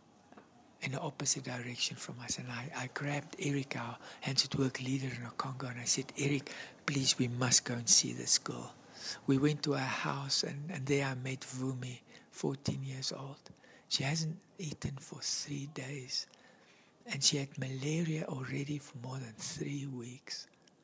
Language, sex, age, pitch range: English, male, 60-79, 130-150 Hz